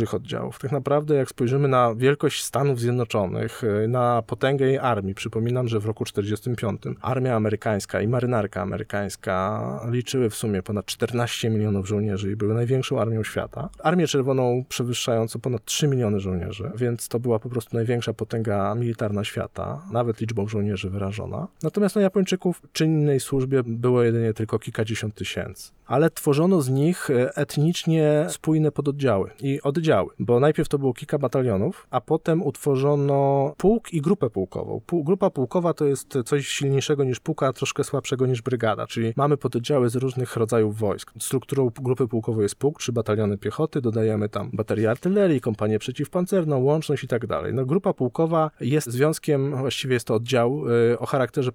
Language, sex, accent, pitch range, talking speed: Polish, male, native, 110-145 Hz, 160 wpm